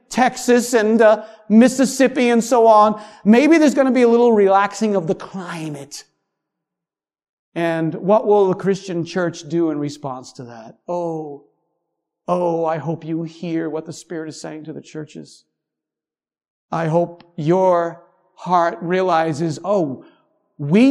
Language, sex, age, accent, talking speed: English, male, 50-69, American, 145 wpm